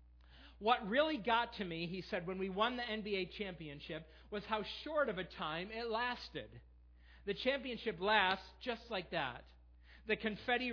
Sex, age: male, 40-59